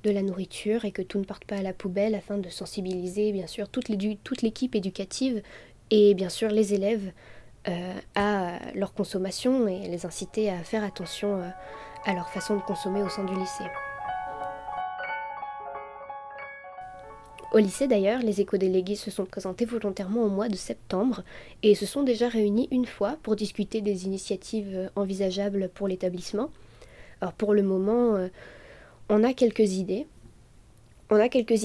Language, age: French, 20-39